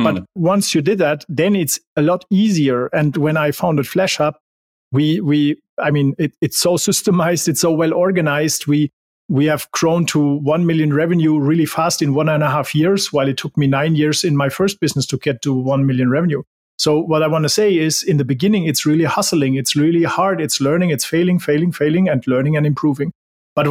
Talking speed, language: 220 wpm, English